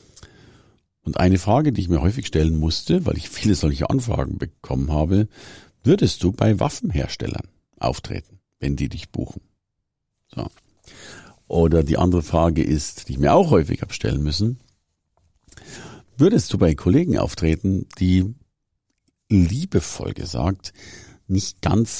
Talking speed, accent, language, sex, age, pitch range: 130 wpm, German, German, male, 50-69, 80-100 Hz